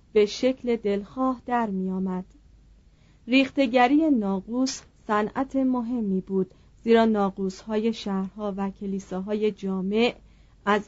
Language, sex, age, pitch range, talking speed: Persian, female, 40-59, 195-240 Hz, 110 wpm